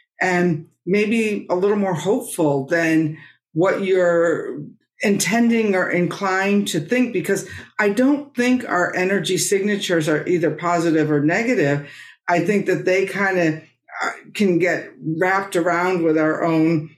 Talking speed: 140 wpm